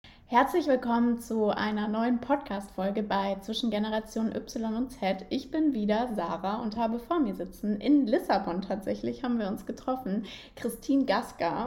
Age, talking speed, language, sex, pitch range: 20-39, 155 wpm, German, female, 205-245 Hz